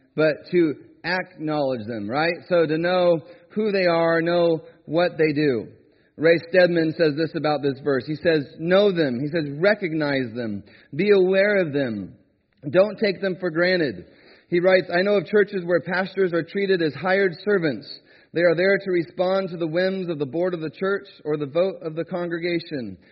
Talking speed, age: 185 wpm, 30-49